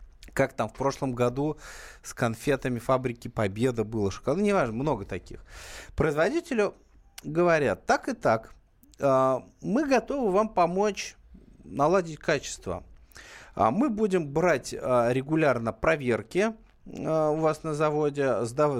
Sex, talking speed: male, 130 wpm